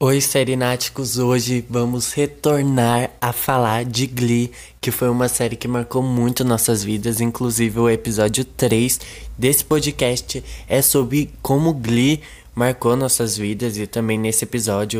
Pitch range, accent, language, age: 115-135 Hz, Brazilian, Portuguese, 20-39